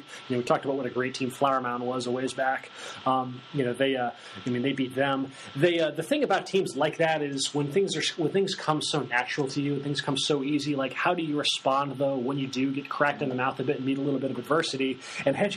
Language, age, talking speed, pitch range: English, 30-49, 280 wpm, 130-150 Hz